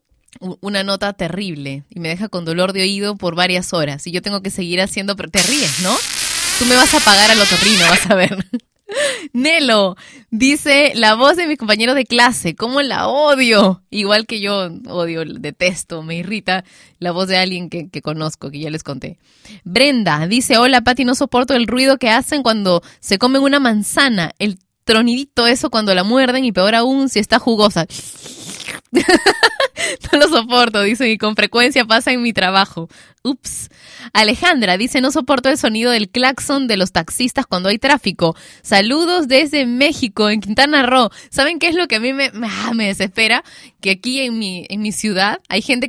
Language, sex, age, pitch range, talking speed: Spanish, female, 20-39, 185-260 Hz, 185 wpm